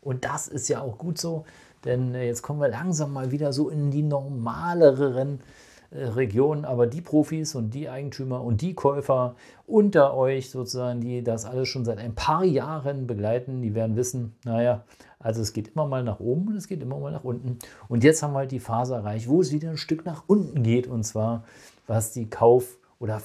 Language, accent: German, German